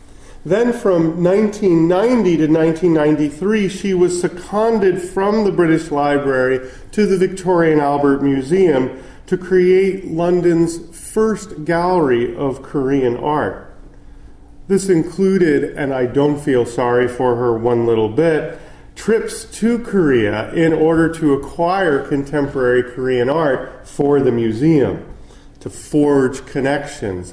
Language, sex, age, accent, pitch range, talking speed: English, male, 40-59, American, 120-180 Hz, 115 wpm